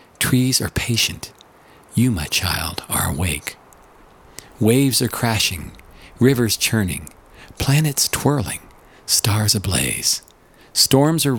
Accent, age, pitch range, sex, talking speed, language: American, 50-69, 90-120 Hz, male, 100 wpm, English